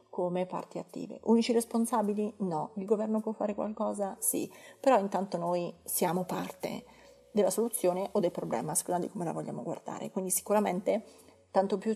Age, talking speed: 30-49, 155 wpm